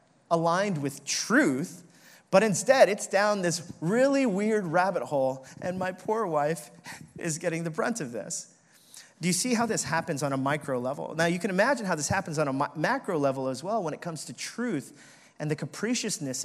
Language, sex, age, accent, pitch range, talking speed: English, male, 30-49, American, 150-205 Hz, 195 wpm